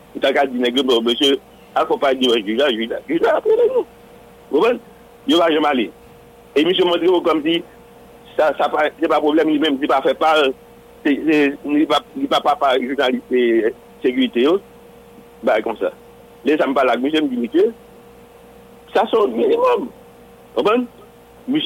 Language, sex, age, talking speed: English, male, 60-79, 90 wpm